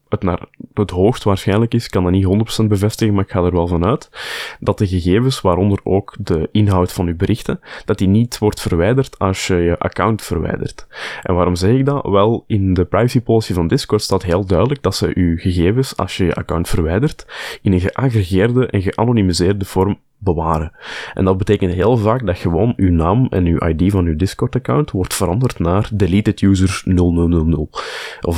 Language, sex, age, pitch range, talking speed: Dutch, male, 20-39, 85-110 Hz, 190 wpm